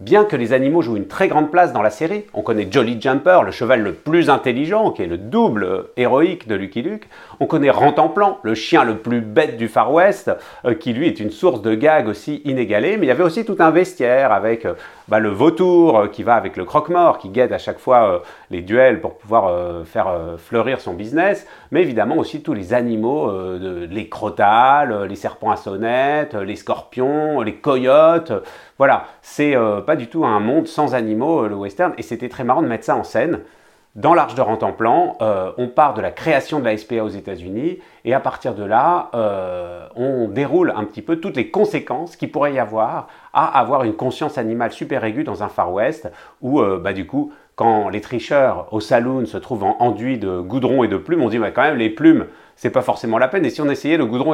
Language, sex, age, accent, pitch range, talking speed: French, male, 40-59, French, 105-155 Hz, 225 wpm